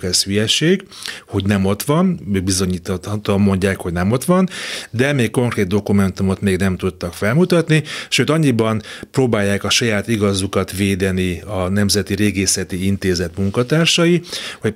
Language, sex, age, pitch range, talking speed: Hungarian, male, 30-49, 95-115 Hz, 130 wpm